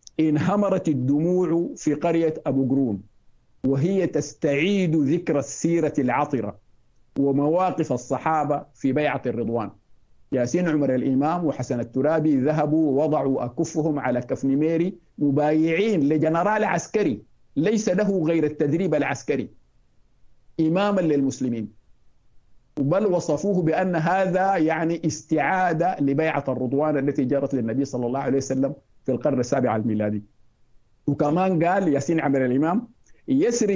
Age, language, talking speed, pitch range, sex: 50-69, Arabic, 110 wpm, 130-165 Hz, male